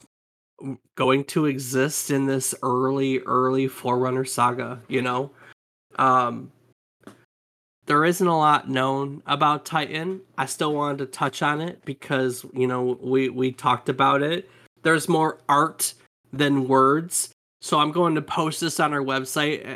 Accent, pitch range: American, 130-150 Hz